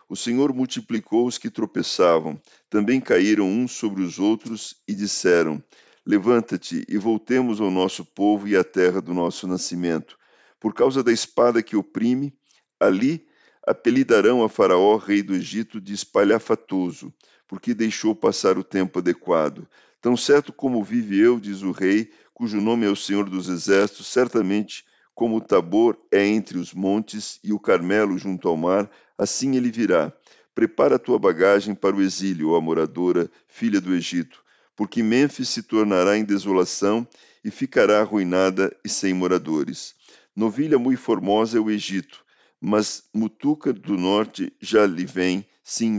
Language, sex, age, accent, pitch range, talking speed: Portuguese, male, 50-69, Brazilian, 95-115 Hz, 155 wpm